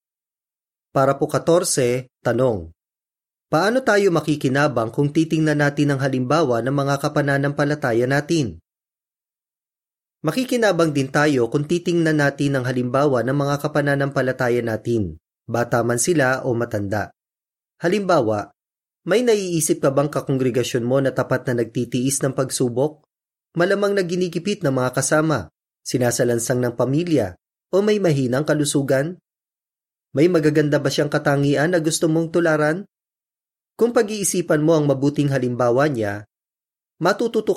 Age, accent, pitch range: 20-39, native, 125-160 Hz